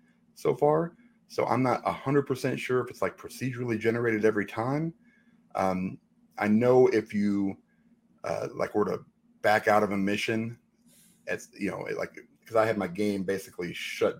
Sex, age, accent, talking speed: male, 30-49, American, 165 wpm